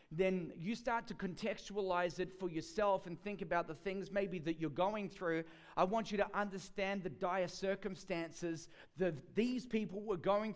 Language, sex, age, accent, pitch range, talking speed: English, male, 30-49, Australian, 165-220 Hz, 175 wpm